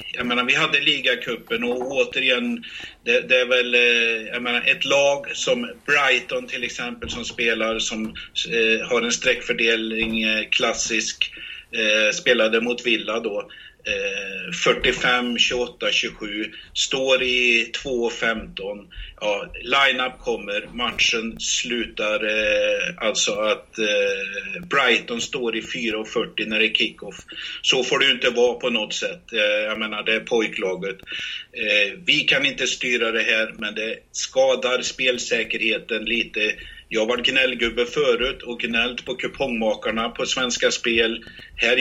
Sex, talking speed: male, 130 wpm